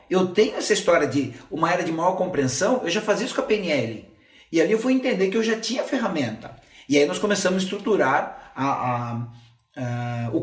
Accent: Brazilian